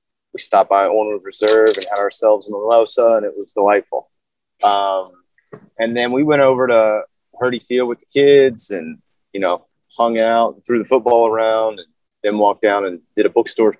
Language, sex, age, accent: English, male, 30-49, American